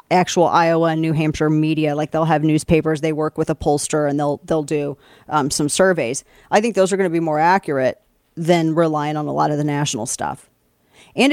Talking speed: 215 wpm